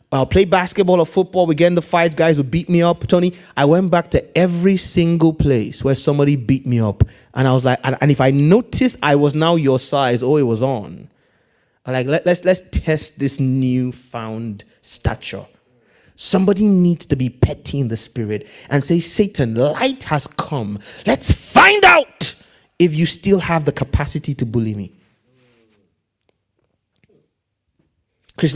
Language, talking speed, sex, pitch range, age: English, 170 wpm, male, 125-180 Hz, 30-49